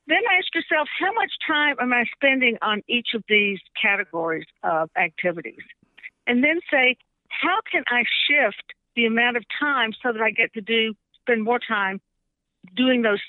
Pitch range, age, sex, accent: 200-255 Hz, 60-79, female, American